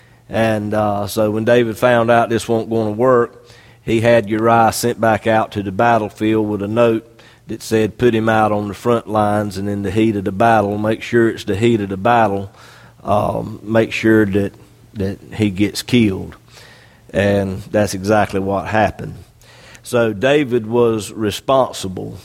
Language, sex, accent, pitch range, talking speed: English, male, American, 105-120 Hz, 175 wpm